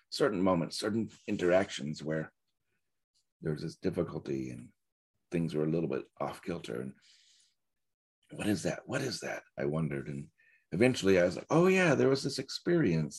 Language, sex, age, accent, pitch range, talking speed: English, male, 40-59, American, 85-120 Hz, 160 wpm